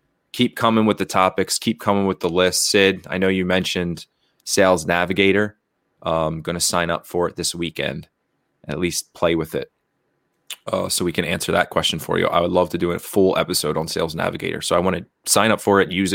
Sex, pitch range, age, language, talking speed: male, 85-100 Hz, 30-49, English, 225 wpm